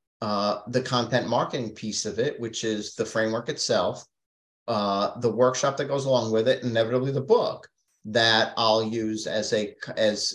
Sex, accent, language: male, American, English